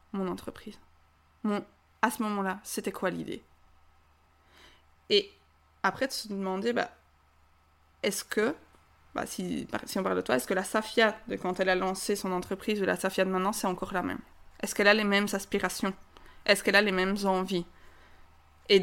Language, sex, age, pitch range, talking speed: French, female, 20-39, 175-210 Hz, 180 wpm